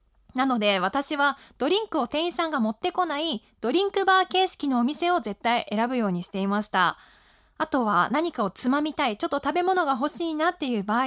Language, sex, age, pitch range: Japanese, female, 20-39, 220-355 Hz